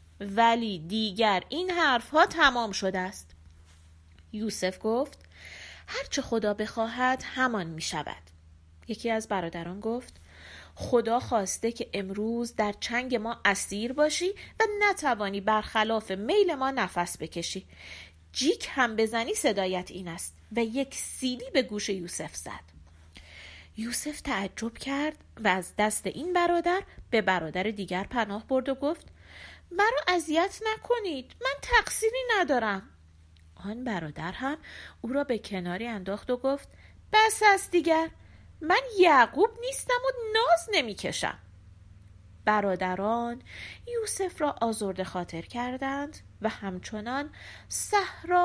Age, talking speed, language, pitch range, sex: 30-49, 120 wpm, Persian, 185-295 Hz, female